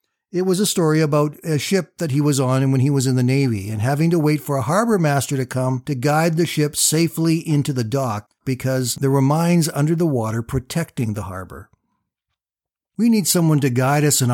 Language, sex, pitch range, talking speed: English, male, 130-170 Hz, 220 wpm